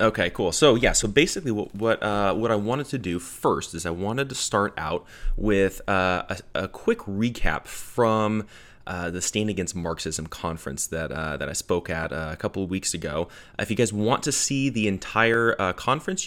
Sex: male